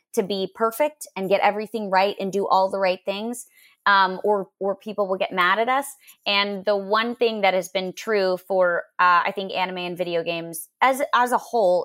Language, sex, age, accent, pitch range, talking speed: English, female, 20-39, American, 180-245 Hz, 215 wpm